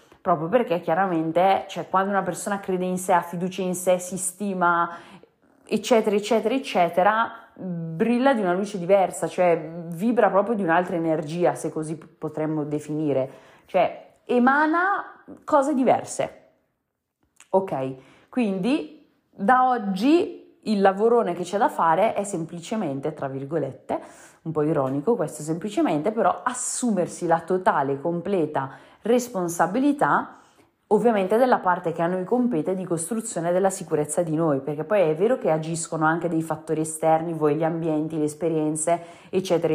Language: Italian